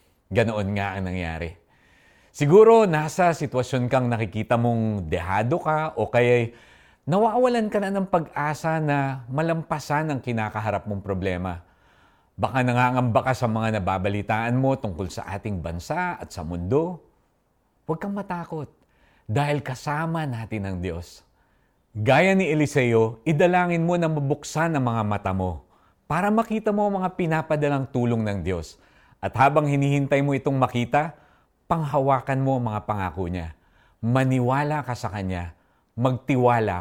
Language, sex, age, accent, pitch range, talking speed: Filipino, male, 50-69, native, 95-150 Hz, 135 wpm